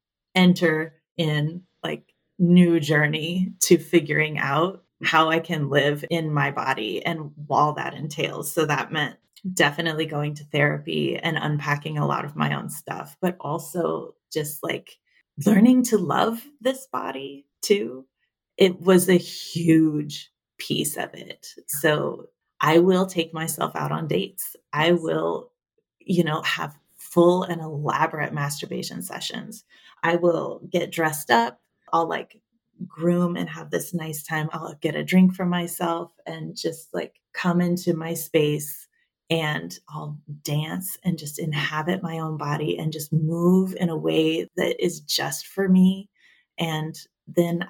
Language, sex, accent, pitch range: English, female, American, 155-185 Hz